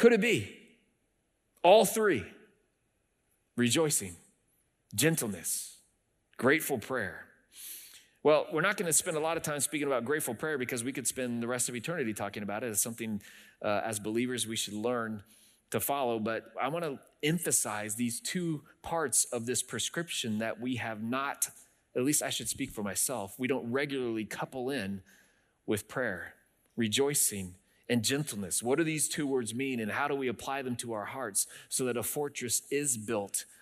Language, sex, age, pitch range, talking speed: English, male, 30-49, 115-170 Hz, 175 wpm